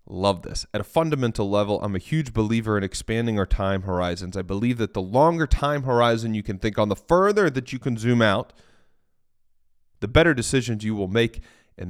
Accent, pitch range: American, 100-140 Hz